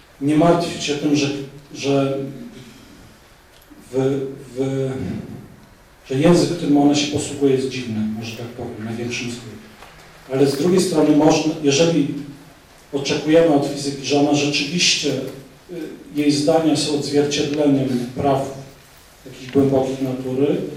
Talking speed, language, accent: 120 wpm, Polish, native